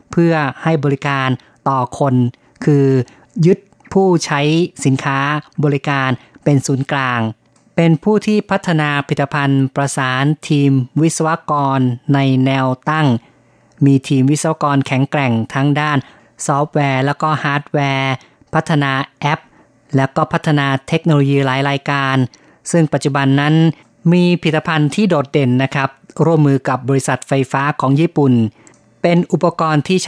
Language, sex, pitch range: Thai, female, 135-155 Hz